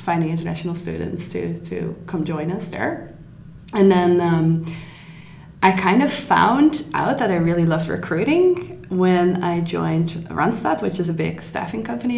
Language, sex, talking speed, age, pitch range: English, female, 160 wpm, 20-39, 150-180 Hz